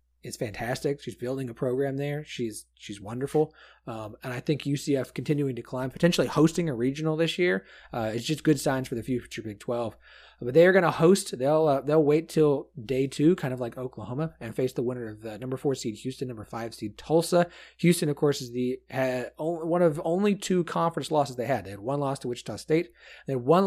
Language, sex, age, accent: English, male, 30-49, American